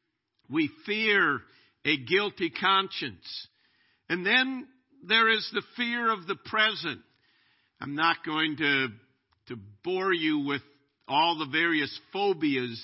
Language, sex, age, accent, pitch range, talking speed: English, male, 50-69, American, 135-200 Hz, 120 wpm